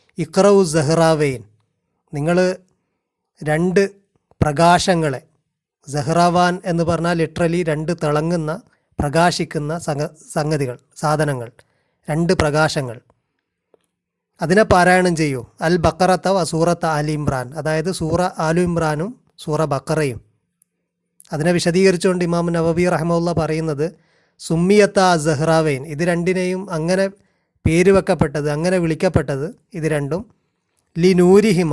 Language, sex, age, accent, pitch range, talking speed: Malayalam, male, 30-49, native, 155-185 Hz, 95 wpm